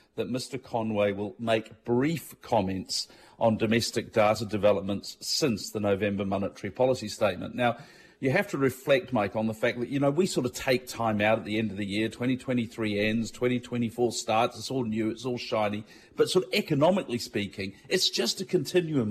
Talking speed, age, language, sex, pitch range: 190 wpm, 40-59, English, male, 110-135 Hz